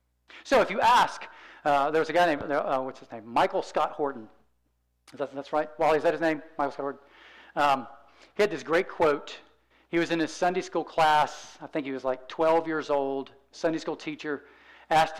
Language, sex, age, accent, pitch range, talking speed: English, male, 40-59, American, 120-170 Hz, 215 wpm